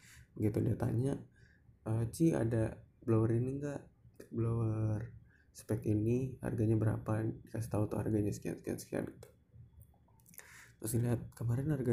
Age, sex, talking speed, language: 20-39, male, 125 wpm, Indonesian